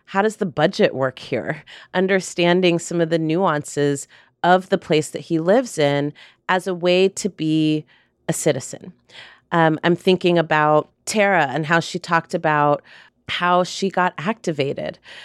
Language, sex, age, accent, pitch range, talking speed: English, female, 30-49, American, 155-190 Hz, 155 wpm